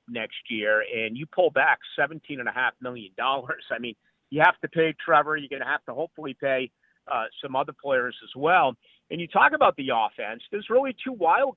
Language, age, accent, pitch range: English, 50-69, American, 130-170 Hz